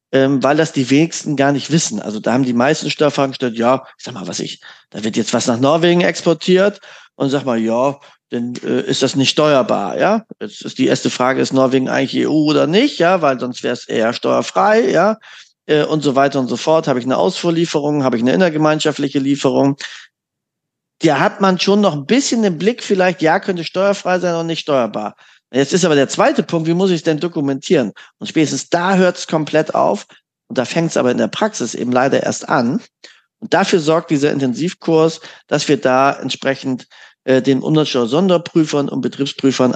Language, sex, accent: German, male, German